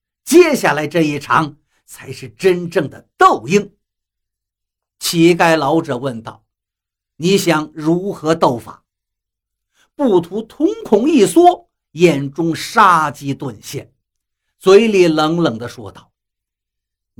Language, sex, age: Chinese, male, 50-69